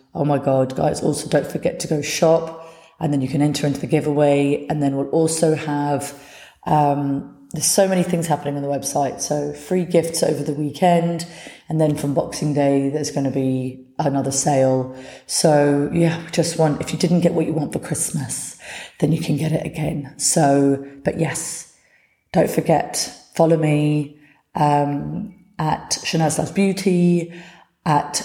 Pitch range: 145-165 Hz